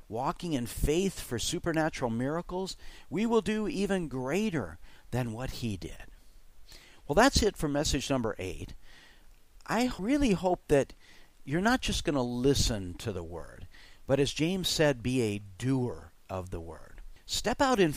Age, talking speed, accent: 50-69, 160 wpm, American